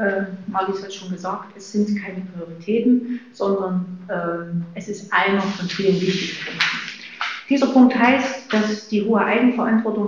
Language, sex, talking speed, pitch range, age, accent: German, female, 150 wpm, 190-225 Hz, 40-59, German